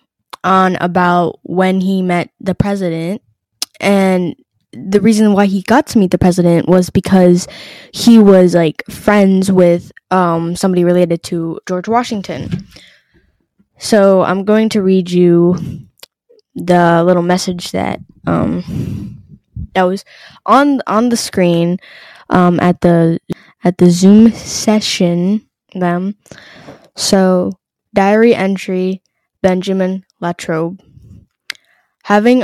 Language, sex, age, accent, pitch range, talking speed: English, female, 10-29, American, 175-200 Hz, 115 wpm